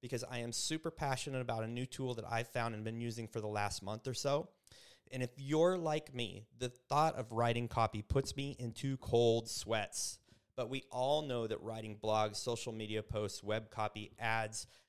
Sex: male